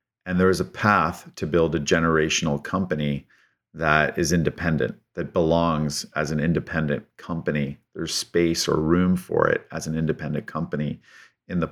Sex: male